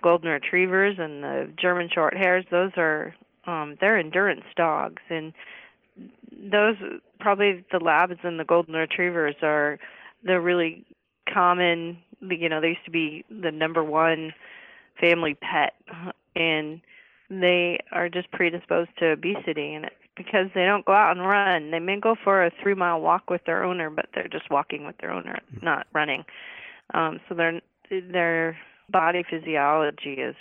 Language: English